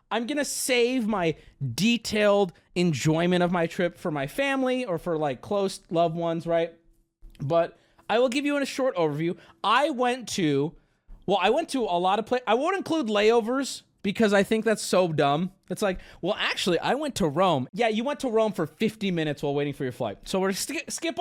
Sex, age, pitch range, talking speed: male, 30-49, 150-230 Hz, 210 wpm